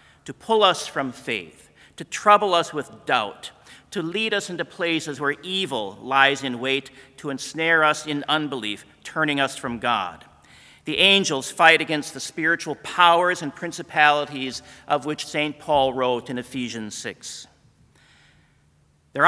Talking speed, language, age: 145 wpm, English, 50-69